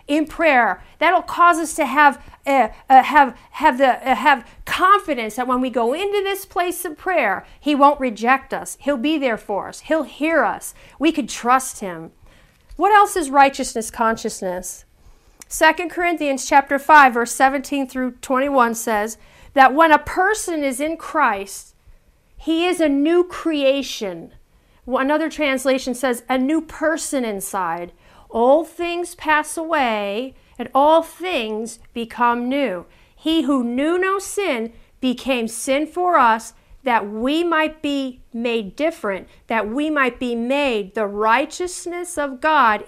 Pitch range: 235-315 Hz